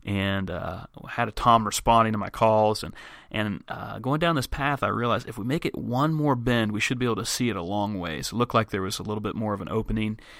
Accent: American